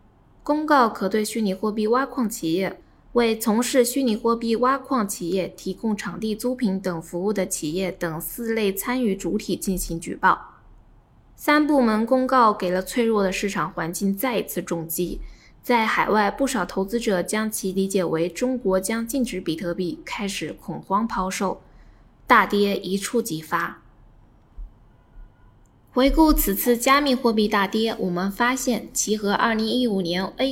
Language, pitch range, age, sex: Chinese, 185-240 Hz, 20-39, female